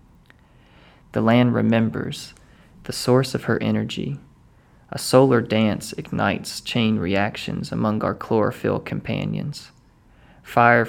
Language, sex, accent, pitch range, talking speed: English, male, American, 105-120 Hz, 105 wpm